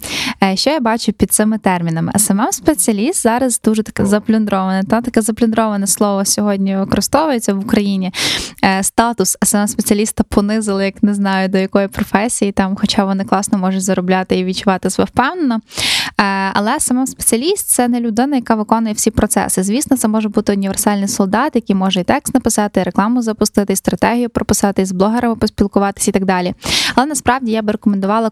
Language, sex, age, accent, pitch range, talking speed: Ukrainian, female, 10-29, native, 195-240 Hz, 165 wpm